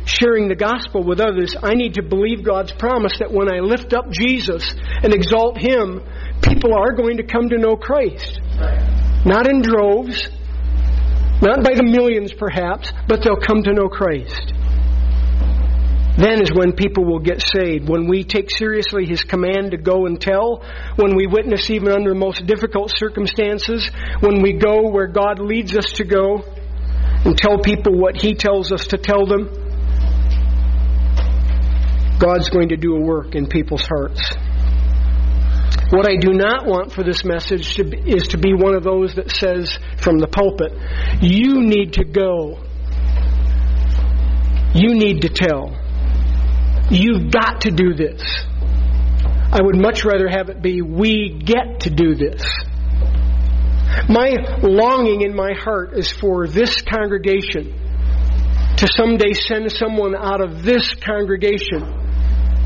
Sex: male